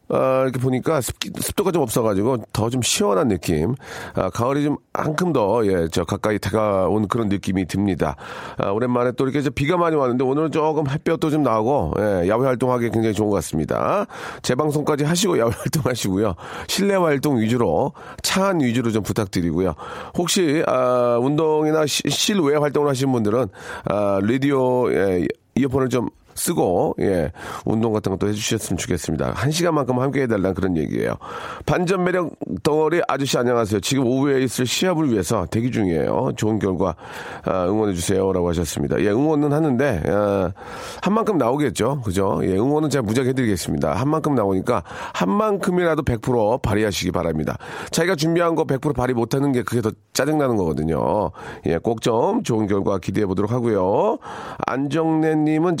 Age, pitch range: 40-59, 100-150 Hz